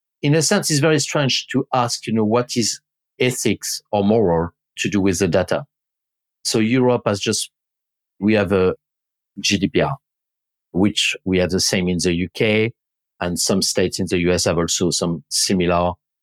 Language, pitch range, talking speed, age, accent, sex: English, 90-115 Hz, 170 wpm, 50-69, French, male